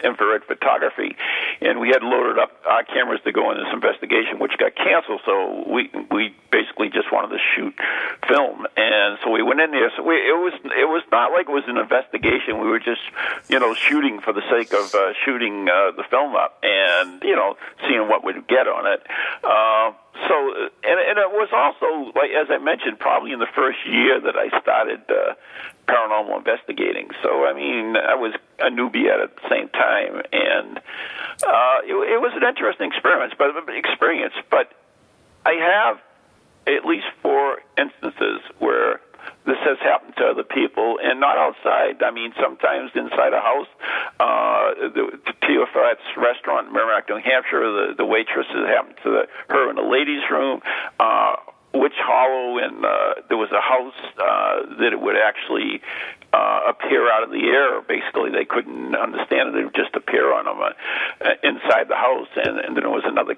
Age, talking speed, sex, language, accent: 50-69, 185 wpm, male, English, American